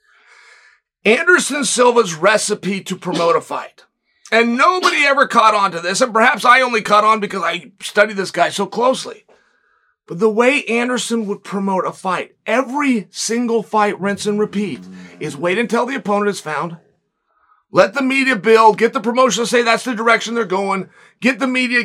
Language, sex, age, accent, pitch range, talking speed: English, male, 30-49, American, 200-255 Hz, 180 wpm